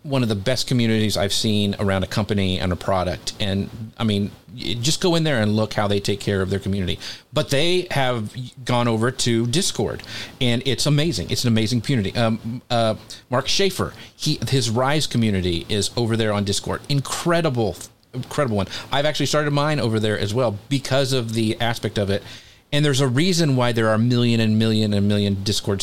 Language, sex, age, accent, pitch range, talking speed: English, male, 40-59, American, 105-125 Hz, 200 wpm